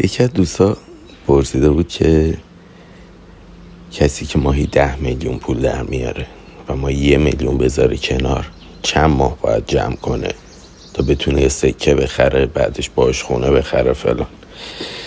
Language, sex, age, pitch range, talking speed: Persian, male, 50-69, 70-90 Hz, 140 wpm